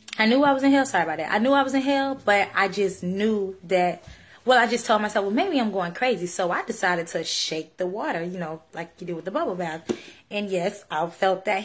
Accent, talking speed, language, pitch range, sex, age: American, 265 wpm, English, 175-235 Hz, female, 10-29